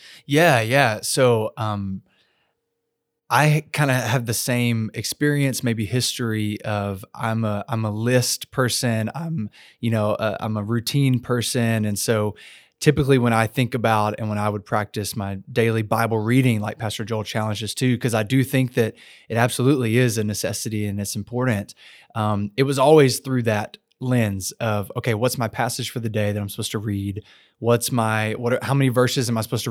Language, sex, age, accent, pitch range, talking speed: English, male, 20-39, American, 110-130 Hz, 185 wpm